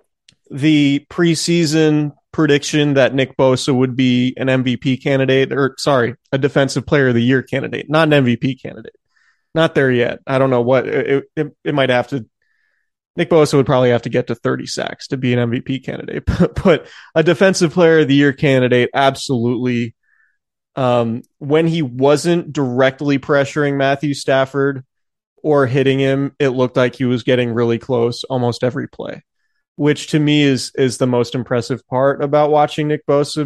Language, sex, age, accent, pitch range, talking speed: English, male, 20-39, American, 125-150 Hz, 170 wpm